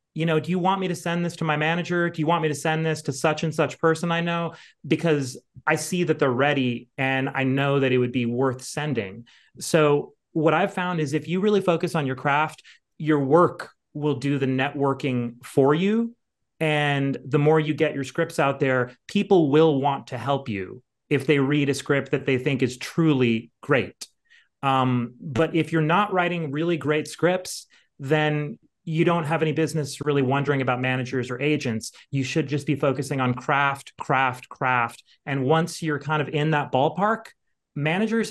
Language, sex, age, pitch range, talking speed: English, male, 30-49, 135-160 Hz, 195 wpm